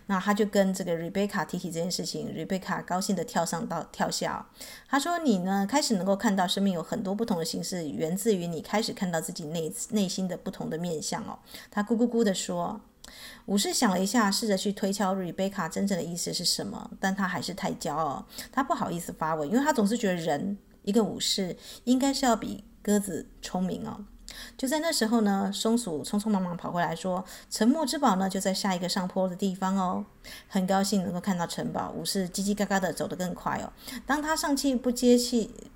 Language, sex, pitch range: Chinese, female, 185-230 Hz